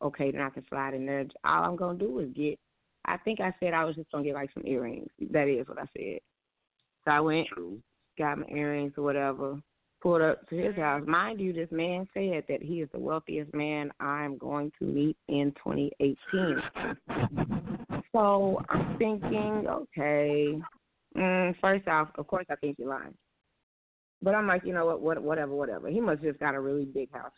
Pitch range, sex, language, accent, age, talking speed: 145-180 Hz, female, English, American, 30-49, 200 wpm